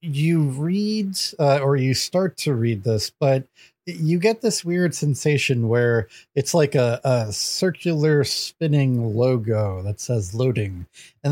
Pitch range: 120-160 Hz